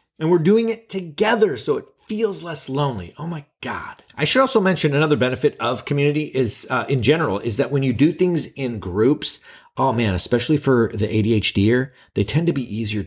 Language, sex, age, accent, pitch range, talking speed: English, male, 30-49, American, 115-155 Hz, 200 wpm